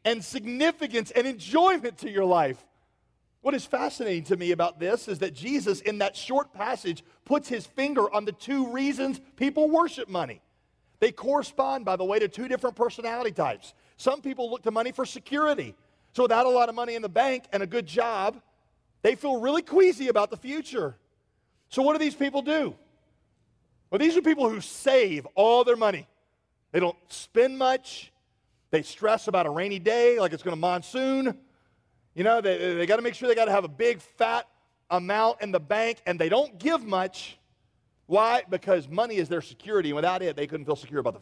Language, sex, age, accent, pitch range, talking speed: English, male, 40-59, American, 170-255 Hz, 200 wpm